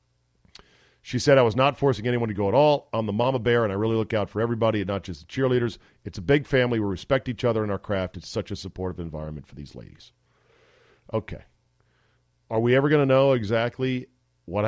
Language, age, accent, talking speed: English, 40-59, American, 225 wpm